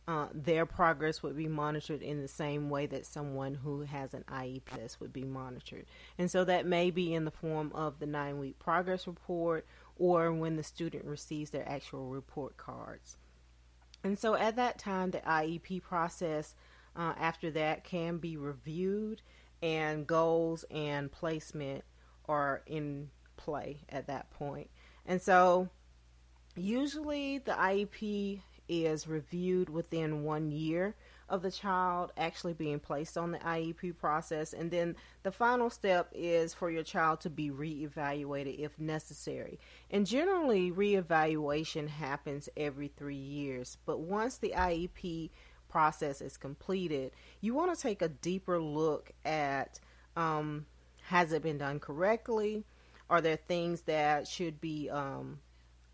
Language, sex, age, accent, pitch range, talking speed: English, female, 30-49, American, 145-180 Hz, 145 wpm